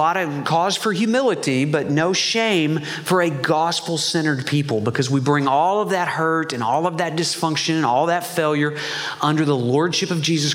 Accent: American